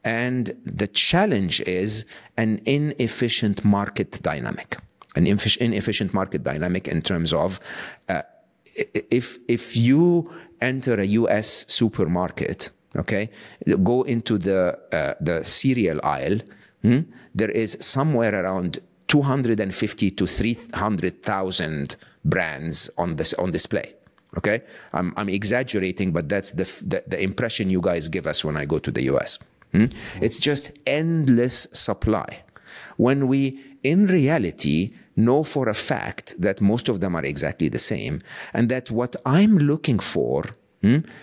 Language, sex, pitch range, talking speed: English, male, 95-130 Hz, 140 wpm